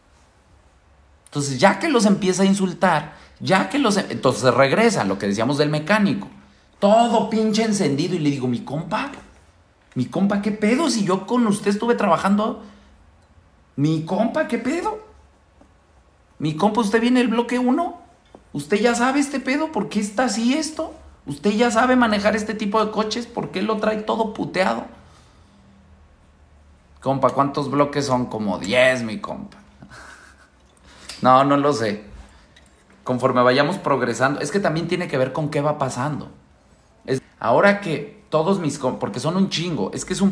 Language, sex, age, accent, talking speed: Spanish, male, 40-59, Mexican, 160 wpm